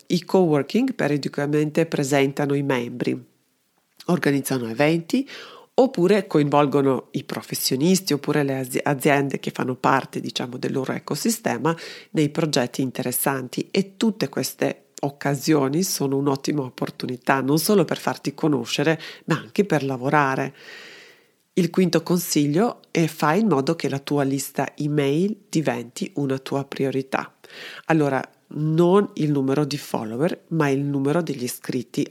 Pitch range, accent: 135-170 Hz, native